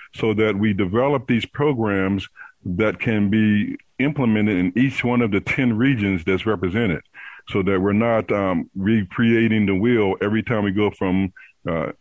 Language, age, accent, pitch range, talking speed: English, 50-69, American, 95-115 Hz, 165 wpm